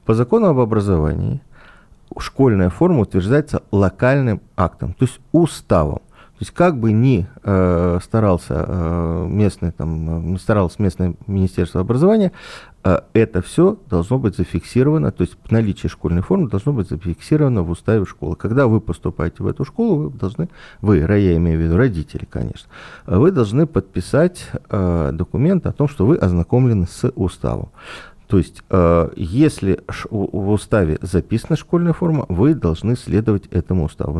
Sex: male